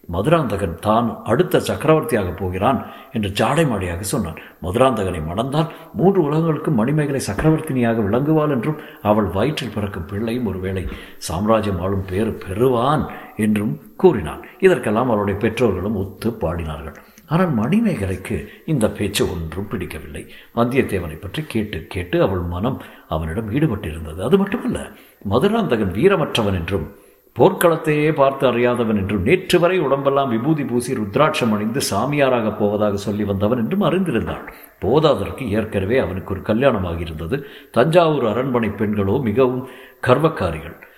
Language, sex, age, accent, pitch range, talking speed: Tamil, male, 60-79, native, 100-135 Hz, 115 wpm